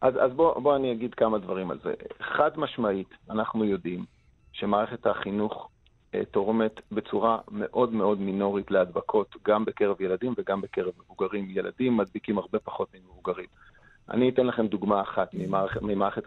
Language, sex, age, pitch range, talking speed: English, male, 40-59, 105-125 Hz, 150 wpm